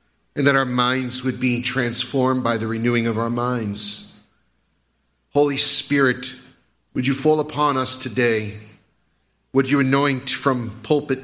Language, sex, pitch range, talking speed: English, male, 110-140 Hz, 140 wpm